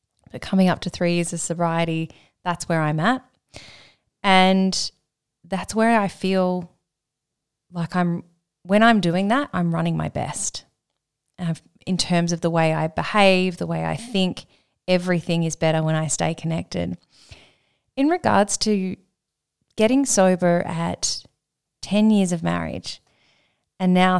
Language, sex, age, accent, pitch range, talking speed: English, female, 20-39, Australian, 165-195 Hz, 145 wpm